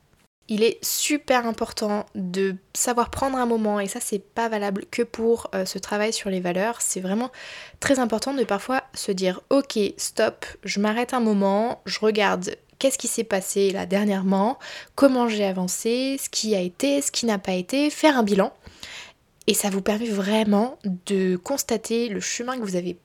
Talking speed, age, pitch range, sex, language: 185 wpm, 20-39, 195-245 Hz, female, French